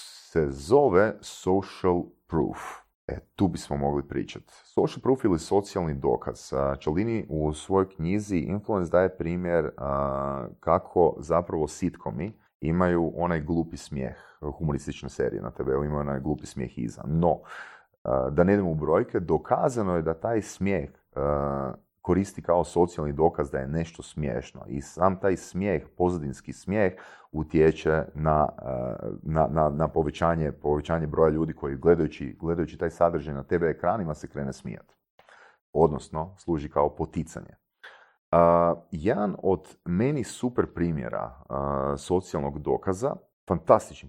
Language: Croatian